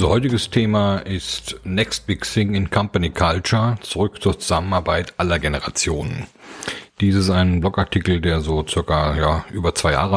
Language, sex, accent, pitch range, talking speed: German, male, German, 85-100 Hz, 155 wpm